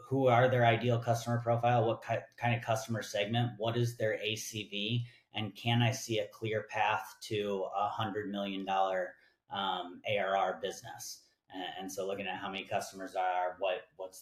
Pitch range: 95-115 Hz